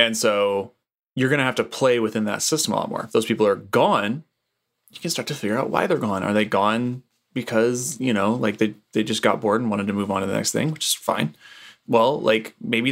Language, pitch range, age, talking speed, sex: English, 105-125 Hz, 20-39, 255 wpm, male